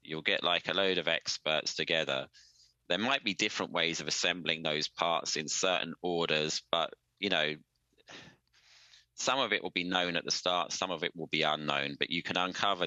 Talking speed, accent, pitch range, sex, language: 195 wpm, British, 70-90 Hz, male, English